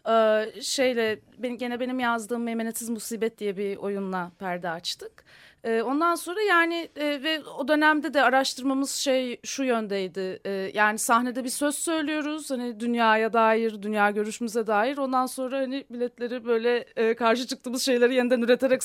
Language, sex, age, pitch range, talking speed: Turkish, female, 30-49, 205-275 Hz, 135 wpm